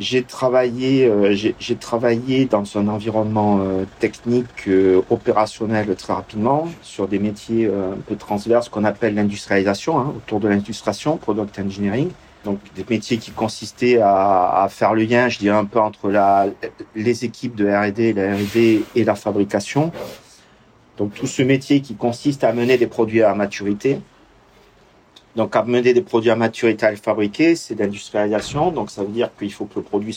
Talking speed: 175 wpm